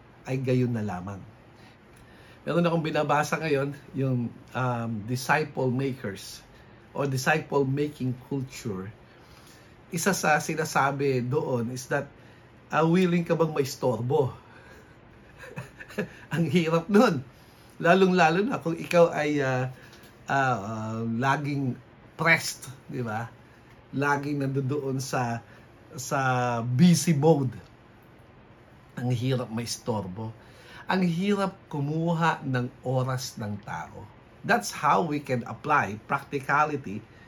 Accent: Filipino